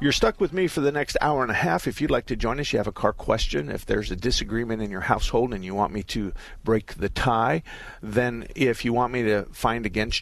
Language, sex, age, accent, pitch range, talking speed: English, male, 50-69, American, 95-115 Hz, 265 wpm